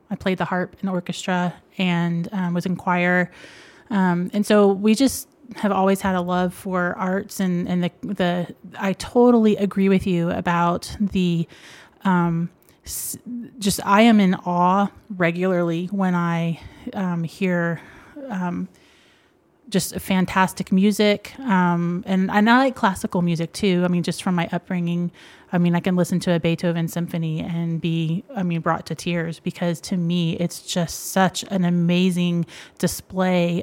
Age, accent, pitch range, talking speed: 30-49, American, 170-195 Hz, 160 wpm